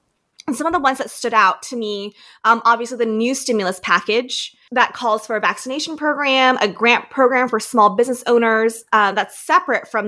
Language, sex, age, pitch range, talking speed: English, female, 20-39, 190-235 Hz, 195 wpm